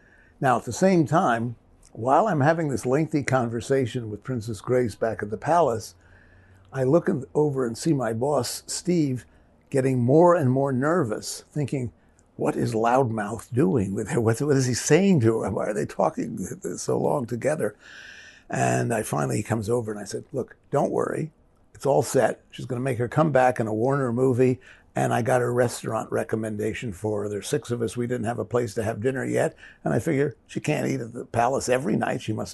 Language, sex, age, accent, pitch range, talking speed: English, male, 60-79, American, 110-140 Hz, 195 wpm